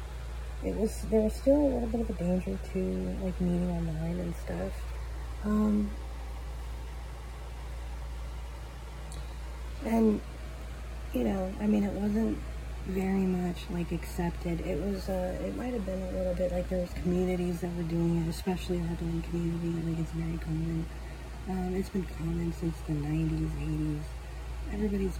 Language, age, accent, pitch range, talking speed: English, 30-49, American, 145-185 Hz, 155 wpm